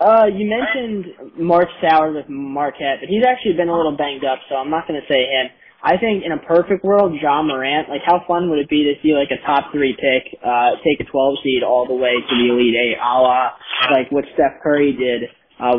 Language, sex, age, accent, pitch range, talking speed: English, male, 20-39, American, 135-160 Hz, 240 wpm